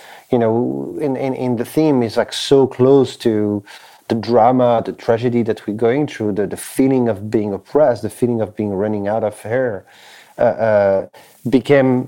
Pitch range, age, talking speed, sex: 105-125 Hz, 40-59, 185 wpm, male